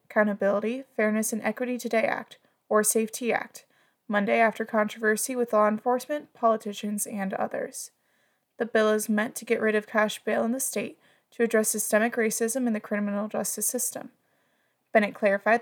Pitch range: 210-235 Hz